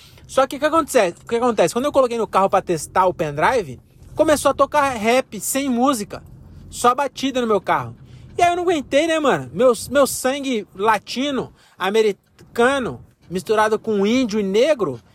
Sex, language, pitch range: male, Portuguese, 180-230 Hz